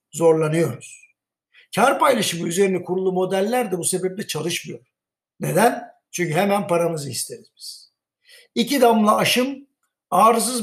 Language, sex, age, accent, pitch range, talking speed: Turkish, male, 60-79, native, 180-235 Hz, 105 wpm